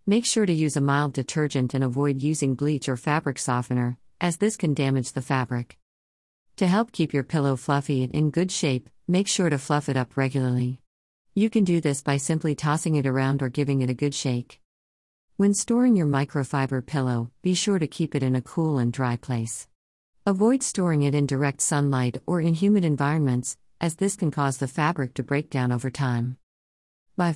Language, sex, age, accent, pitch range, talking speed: English, female, 50-69, American, 130-165 Hz, 195 wpm